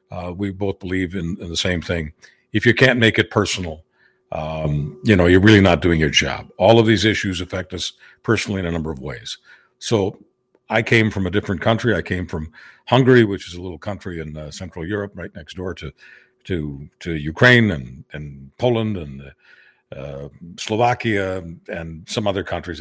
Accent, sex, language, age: American, male, English, 50-69